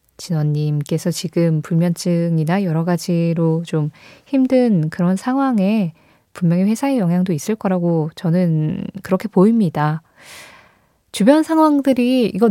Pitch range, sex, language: 160-205 Hz, female, Korean